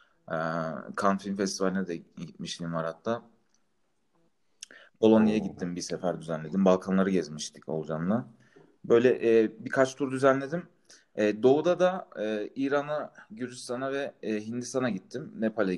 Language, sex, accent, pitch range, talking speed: Turkish, male, native, 95-130 Hz, 100 wpm